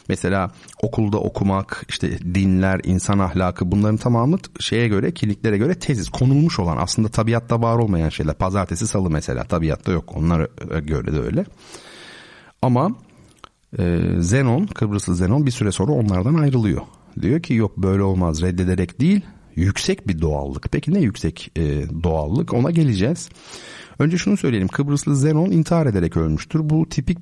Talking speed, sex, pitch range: 150 wpm, male, 90-125 Hz